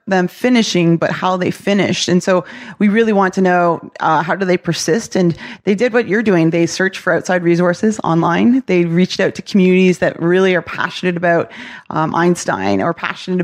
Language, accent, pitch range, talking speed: English, American, 170-200 Hz, 195 wpm